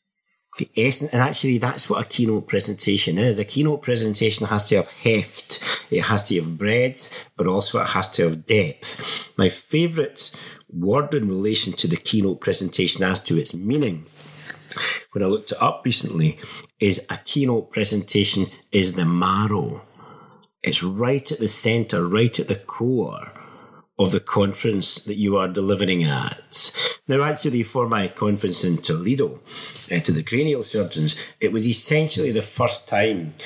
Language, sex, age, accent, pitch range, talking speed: English, male, 40-59, British, 100-130 Hz, 160 wpm